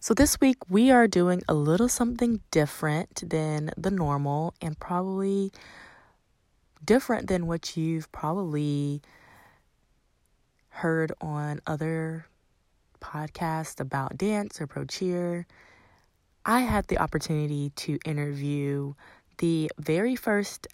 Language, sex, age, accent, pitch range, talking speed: English, female, 20-39, American, 150-190 Hz, 105 wpm